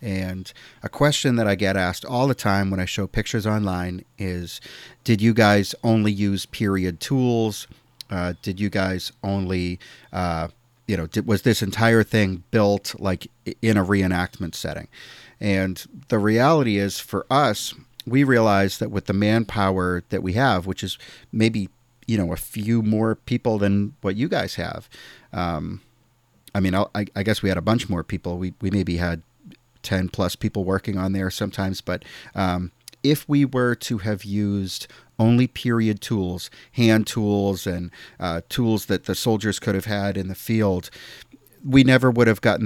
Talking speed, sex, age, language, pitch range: 175 wpm, male, 40-59, English, 95-115 Hz